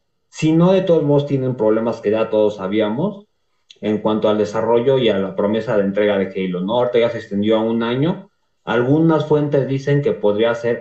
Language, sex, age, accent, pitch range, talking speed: Spanish, male, 30-49, Mexican, 105-150 Hz, 200 wpm